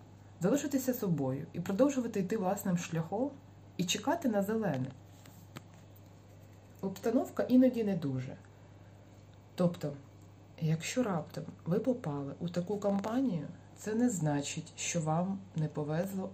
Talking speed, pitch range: 110 wpm, 125-200 Hz